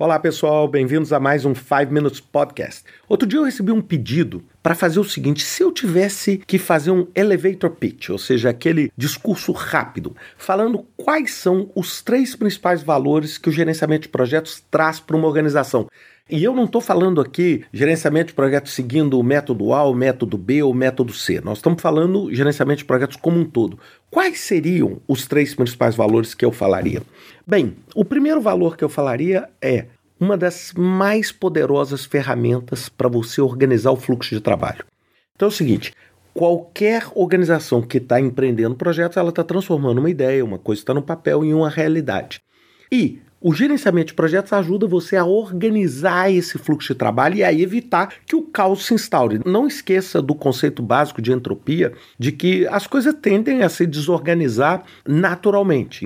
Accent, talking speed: Brazilian, 180 wpm